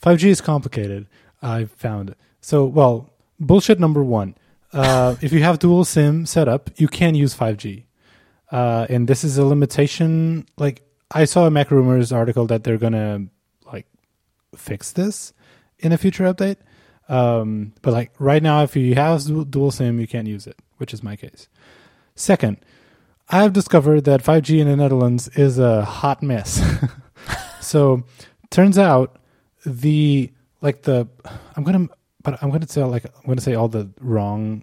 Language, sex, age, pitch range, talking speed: English, male, 20-39, 115-145 Hz, 165 wpm